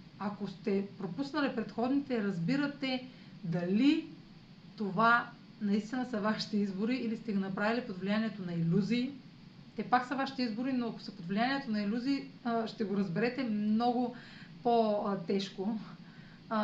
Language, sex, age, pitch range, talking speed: Bulgarian, female, 30-49, 195-245 Hz, 130 wpm